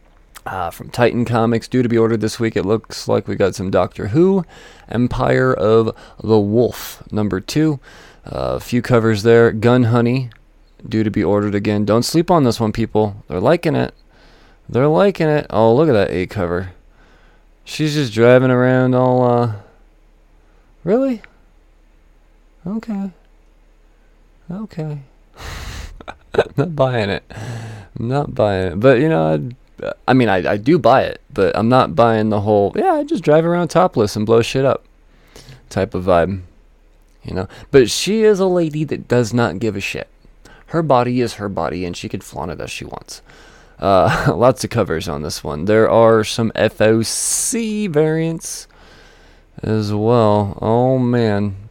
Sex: male